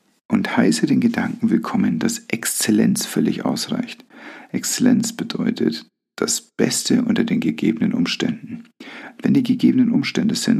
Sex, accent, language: male, German, German